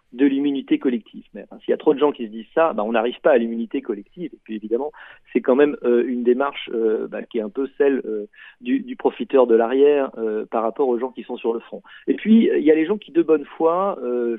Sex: male